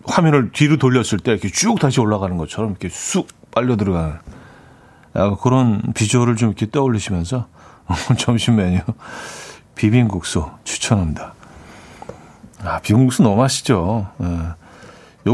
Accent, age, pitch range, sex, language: native, 40-59, 105-140 Hz, male, Korean